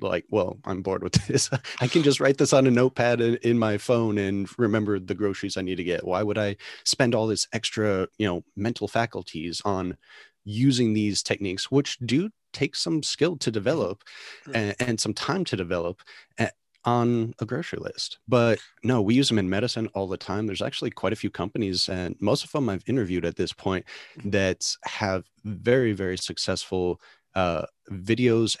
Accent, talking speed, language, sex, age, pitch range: American, 185 wpm, English, male, 30-49, 95-120 Hz